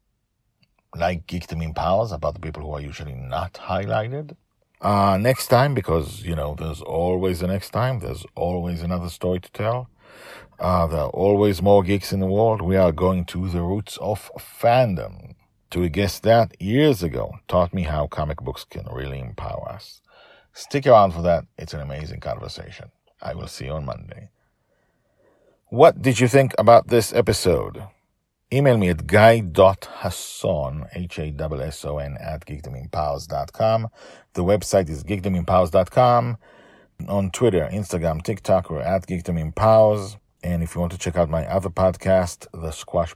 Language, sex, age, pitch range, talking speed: English, male, 50-69, 85-100 Hz, 150 wpm